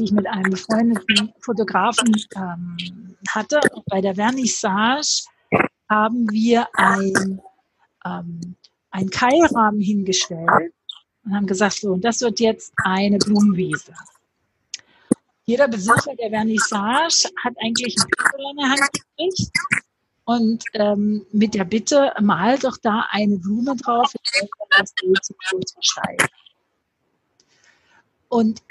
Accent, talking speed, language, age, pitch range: German, 115 wpm, English, 50-69, 205-275 Hz